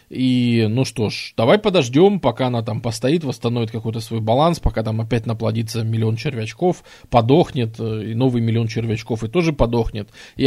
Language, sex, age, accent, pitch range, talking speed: Russian, male, 20-39, native, 115-150 Hz, 165 wpm